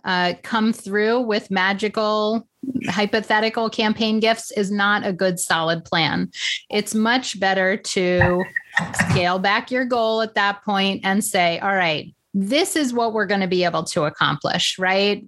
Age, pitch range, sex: 30-49, 185-220 Hz, female